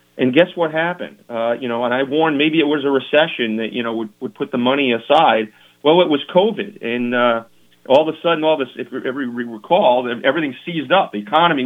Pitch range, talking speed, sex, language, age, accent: 115-140 Hz, 230 wpm, male, English, 40-59, American